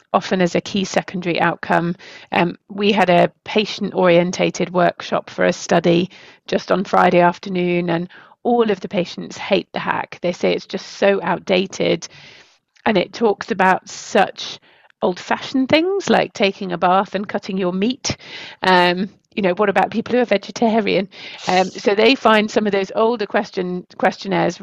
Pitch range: 175-205 Hz